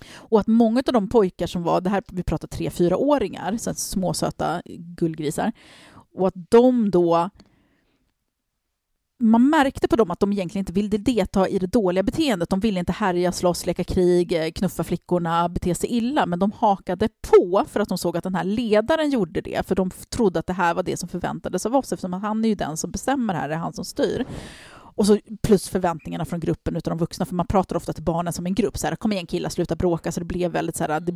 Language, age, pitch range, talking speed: English, 30-49, 175-225 Hz, 225 wpm